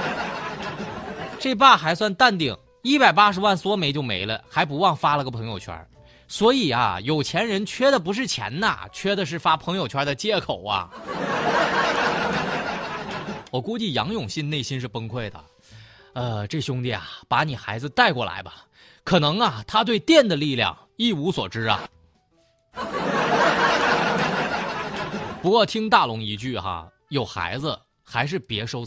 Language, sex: Chinese, male